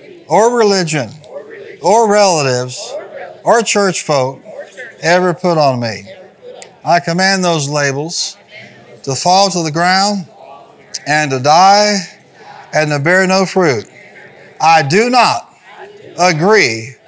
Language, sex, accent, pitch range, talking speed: English, male, American, 170-220 Hz, 110 wpm